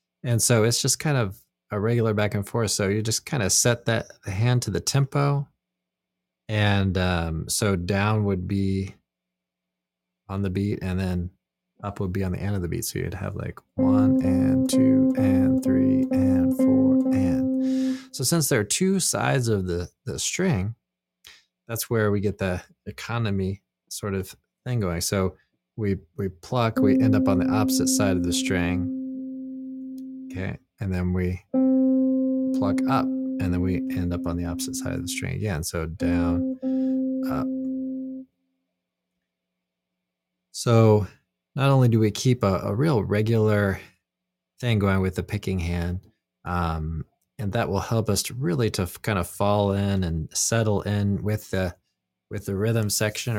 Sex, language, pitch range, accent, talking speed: male, English, 90-130 Hz, American, 165 wpm